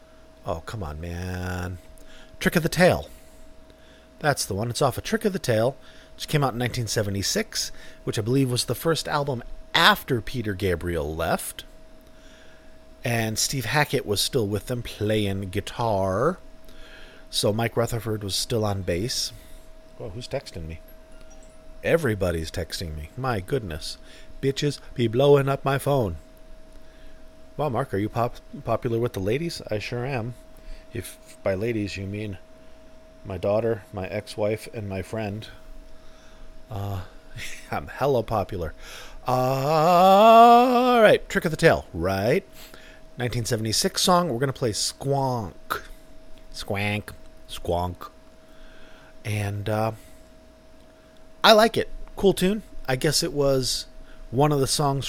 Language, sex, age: English, male, 40-59